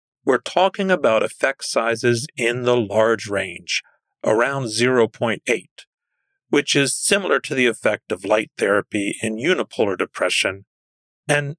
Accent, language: American, English